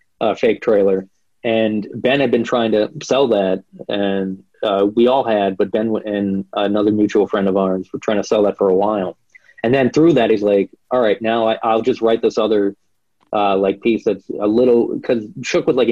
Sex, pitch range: male, 100-125 Hz